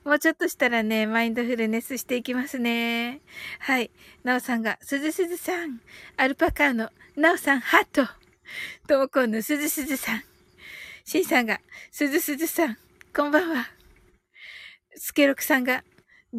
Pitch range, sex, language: 255-335 Hz, female, Japanese